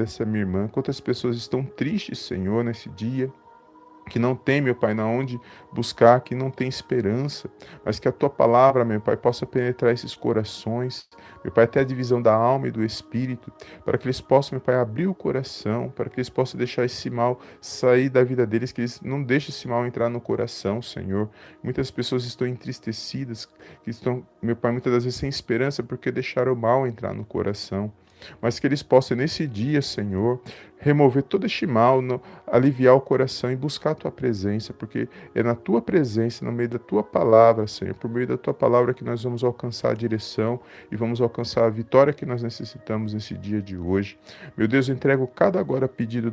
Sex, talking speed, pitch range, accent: male, 200 wpm, 110-130 Hz, Brazilian